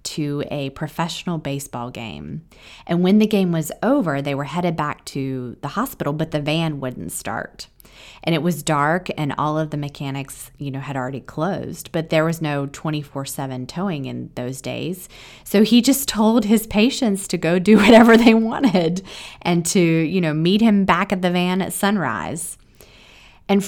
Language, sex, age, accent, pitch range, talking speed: English, female, 30-49, American, 145-195 Hz, 180 wpm